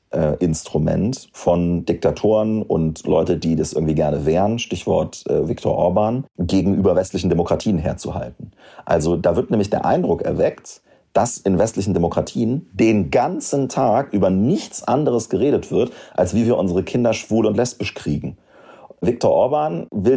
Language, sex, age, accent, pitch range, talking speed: German, male, 40-59, German, 90-120 Hz, 150 wpm